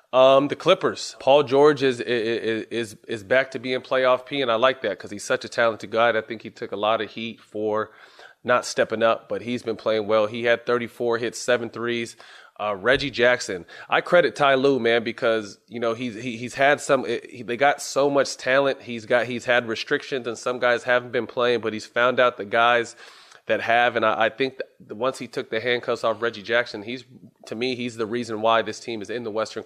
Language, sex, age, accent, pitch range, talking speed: English, male, 30-49, American, 115-130 Hz, 225 wpm